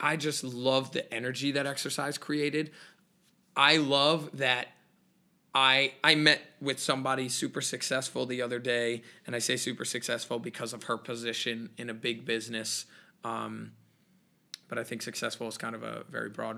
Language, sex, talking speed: English, male, 165 wpm